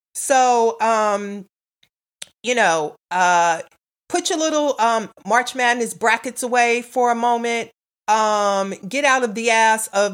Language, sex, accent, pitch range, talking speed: English, female, American, 200-280 Hz, 135 wpm